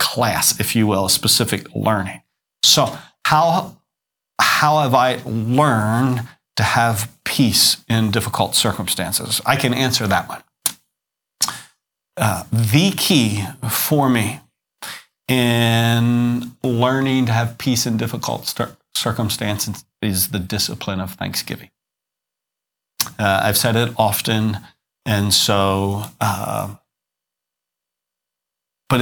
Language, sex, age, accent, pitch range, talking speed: English, male, 40-59, American, 100-130 Hz, 105 wpm